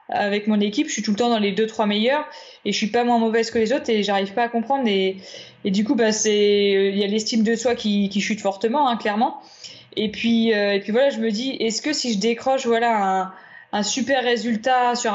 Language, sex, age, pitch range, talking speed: French, female, 20-39, 205-240 Hz, 260 wpm